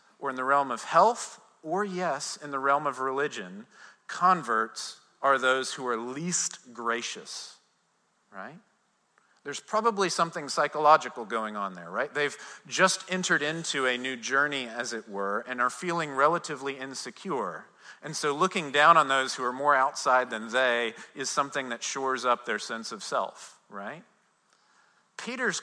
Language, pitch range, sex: English, 125-170 Hz, male